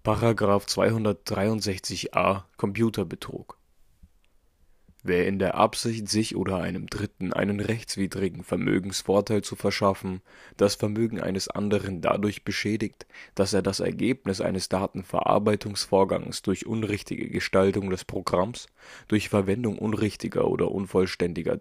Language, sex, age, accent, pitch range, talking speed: German, male, 20-39, German, 90-110 Hz, 105 wpm